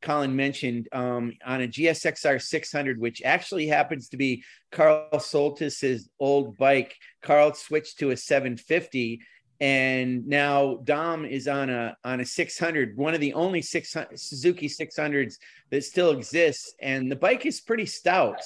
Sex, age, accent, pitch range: male, 40-59, American, 130-165 Hz